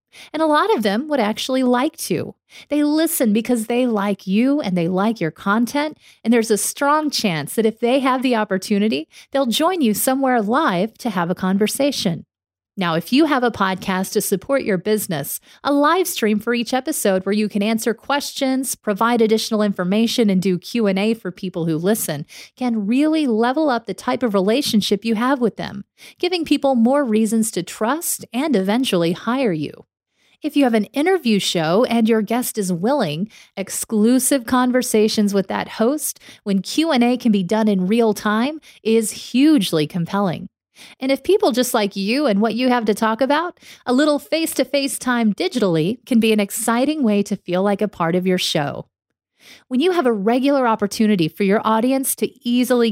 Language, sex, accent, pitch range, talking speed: English, female, American, 200-265 Hz, 185 wpm